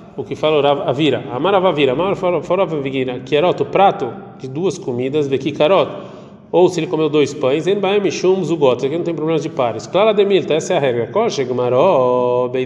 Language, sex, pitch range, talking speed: Portuguese, male, 140-185 Hz, 135 wpm